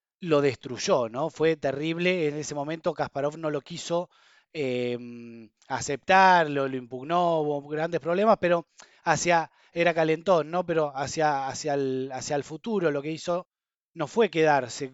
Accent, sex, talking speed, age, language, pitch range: Argentinian, male, 150 wpm, 20-39, Spanish, 140-180 Hz